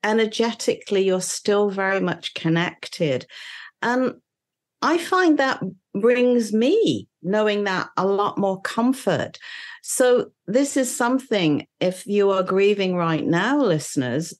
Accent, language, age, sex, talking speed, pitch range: British, English, 50-69, female, 120 wpm, 180-220 Hz